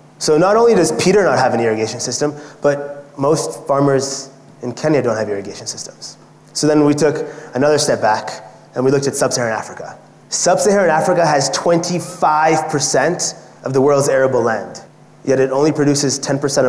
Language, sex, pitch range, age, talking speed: English, male, 125-155 Hz, 20-39, 165 wpm